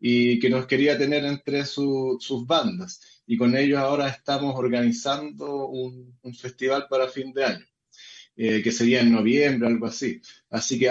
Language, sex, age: English, male, 20-39